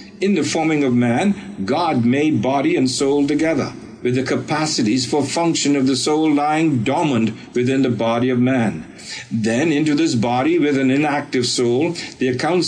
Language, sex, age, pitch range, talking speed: English, male, 60-79, 125-155 Hz, 170 wpm